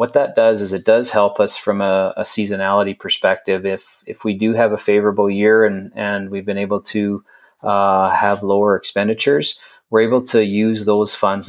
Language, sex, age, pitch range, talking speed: English, male, 30-49, 100-110 Hz, 195 wpm